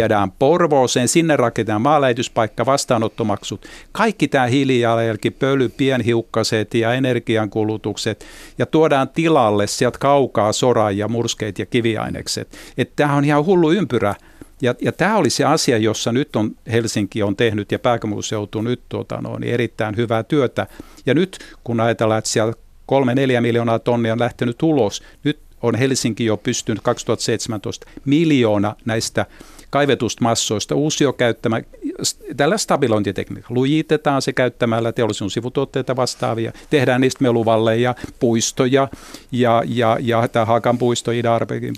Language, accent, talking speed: Finnish, native, 135 wpm